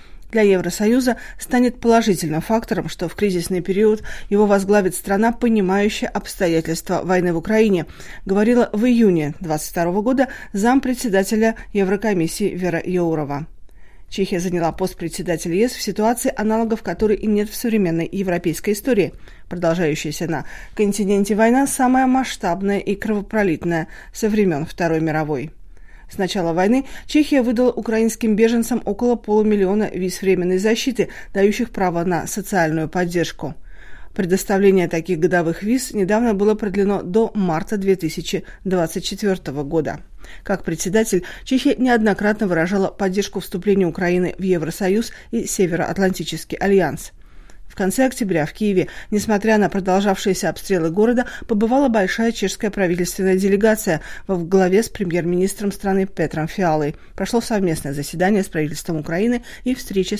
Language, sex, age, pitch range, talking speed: Russian, female, 40-59, 175-220 Hz, 125 wpm